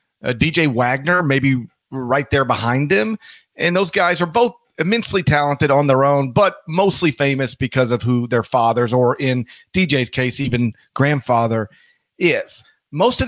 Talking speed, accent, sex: 160 wpm, American, male